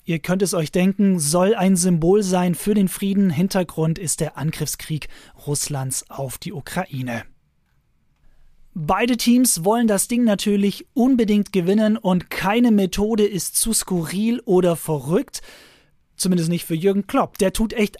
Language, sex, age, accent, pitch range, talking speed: German, male, 30-49, German, 175-225 Hz, 145 wpm